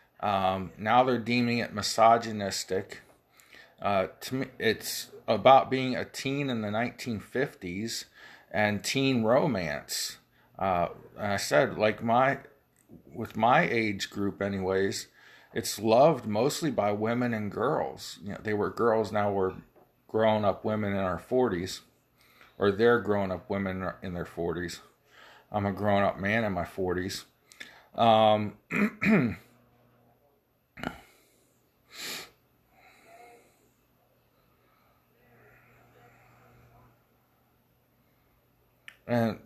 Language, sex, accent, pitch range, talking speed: English, male, American, 100-120 Hz, 100 wpm